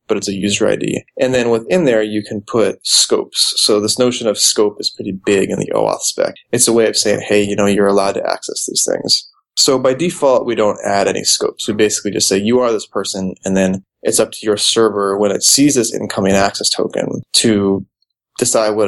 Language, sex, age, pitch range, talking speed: English, male, 20-39, 100-130 Hz, 230 wpm